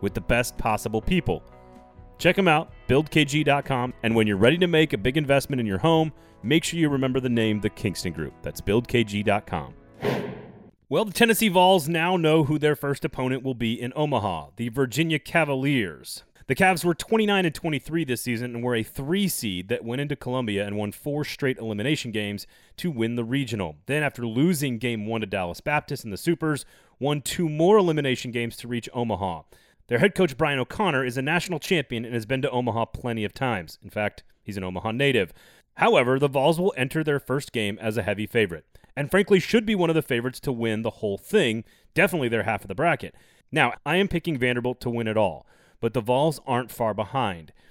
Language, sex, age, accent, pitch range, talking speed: English, male, 30-49, American, 110-150 Hz, 205 wpm